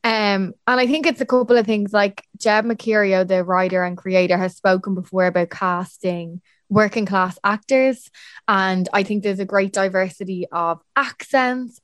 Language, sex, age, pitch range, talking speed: English, female, 20-39, 190-245 Hz, 165 wpm